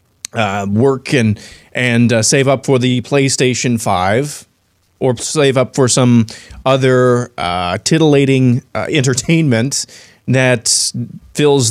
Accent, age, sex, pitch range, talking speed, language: American, 30-49, male, 105-135 Hz, 120 wpm, English